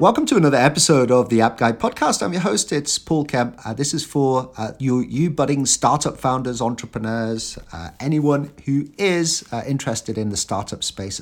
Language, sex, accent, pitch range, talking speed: English, male, British, 100-130 Hz, 195 wpm